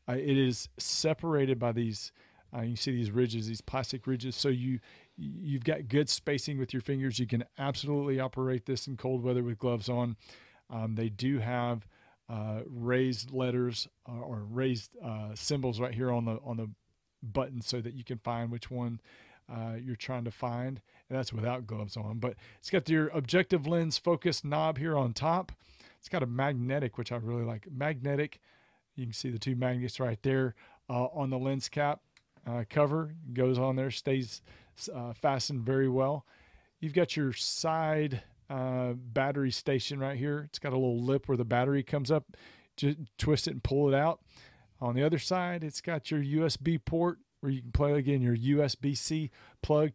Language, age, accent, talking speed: English, 40-59, American, 185 wpm